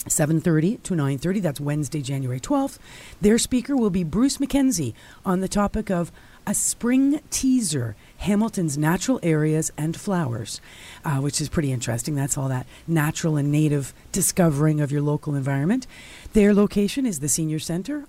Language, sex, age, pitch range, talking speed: English, female, 40-59, 150-210 Hz, 165 wpm